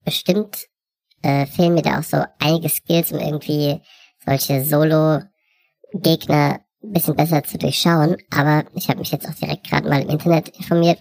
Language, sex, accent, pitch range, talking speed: German, male, German, 140-170 Hz, 165 wpm